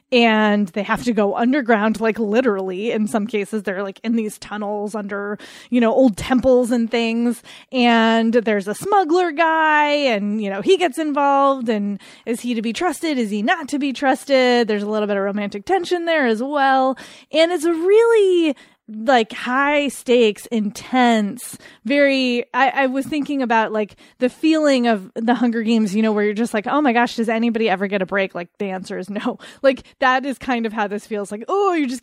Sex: female